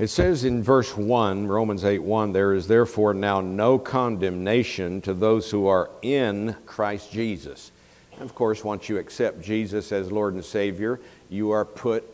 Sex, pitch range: male, 100-135 Hz